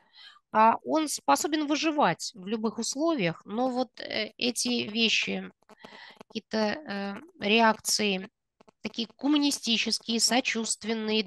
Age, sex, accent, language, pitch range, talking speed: 20-39, female, native, Russian, 200-260 Hz, 80 wpm